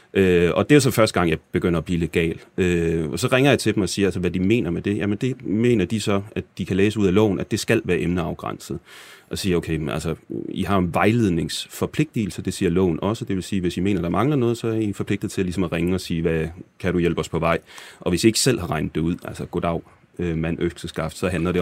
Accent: native